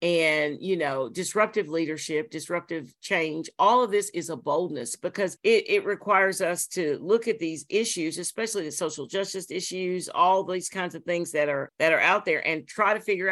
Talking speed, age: 195 wpm, 50-69